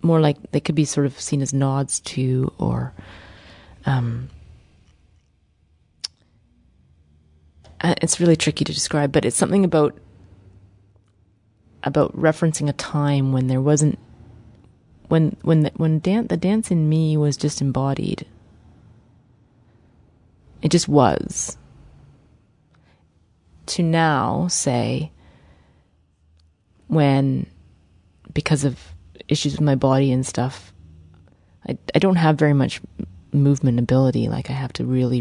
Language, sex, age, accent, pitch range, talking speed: English, female, 30-49, American, 95-150 Hz, 120 wpm